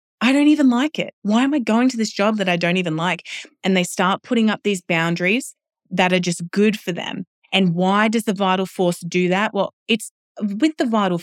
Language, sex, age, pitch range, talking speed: English, female, 20-39, 175-225 Hz, 230 wpm